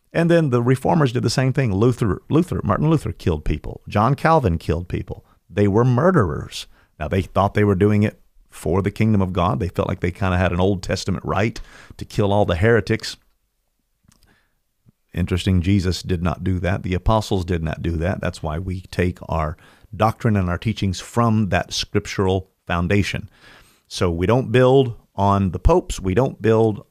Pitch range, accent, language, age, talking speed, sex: 90-115 Hz, American, English, 40-59, 185 wpm, male